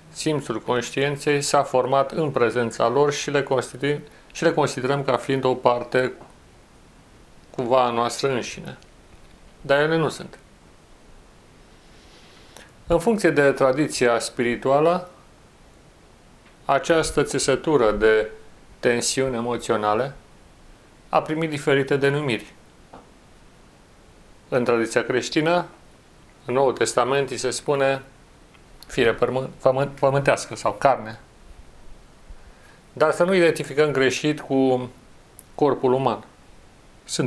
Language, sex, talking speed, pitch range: Romanian, male, 95 wpm, 120-145 Hz